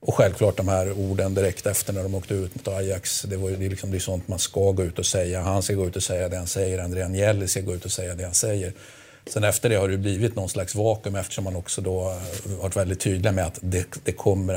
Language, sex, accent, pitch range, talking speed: Danish, male, Swedish, 95-110 Hz, 270 wpm